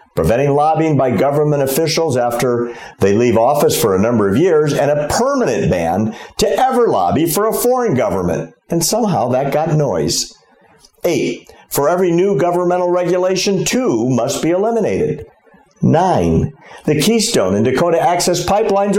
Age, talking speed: 50-69, 150 wpm